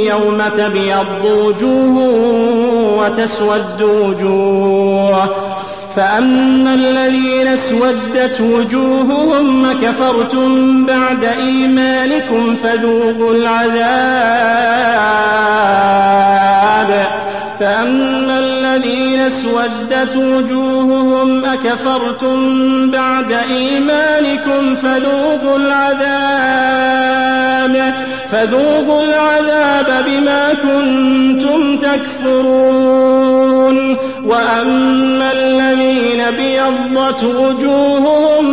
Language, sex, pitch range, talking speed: Arabic, male, 250-275 Hz, 50 wpm